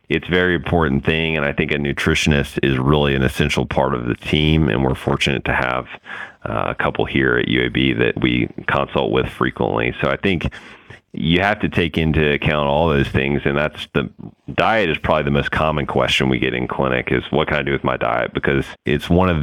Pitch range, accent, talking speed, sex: 65-75 Hz, American, 215 wpm, male